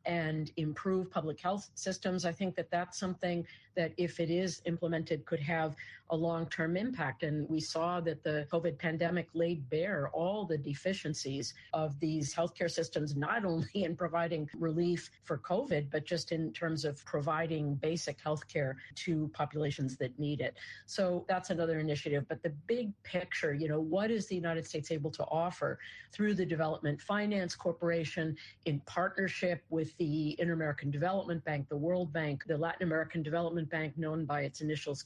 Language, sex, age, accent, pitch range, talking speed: English, female, 50-69, American, 150-175 Hz, 170 wpm